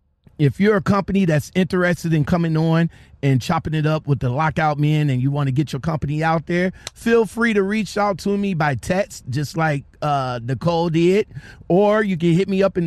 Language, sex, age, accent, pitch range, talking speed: English, male, 30-49, American, 140-200 Hz, 220 wpm